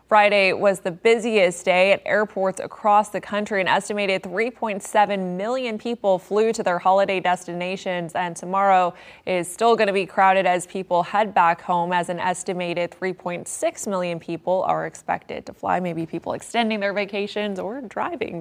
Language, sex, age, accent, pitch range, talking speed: English, female, 20-39, American, 175-210 Hz, 165 wpm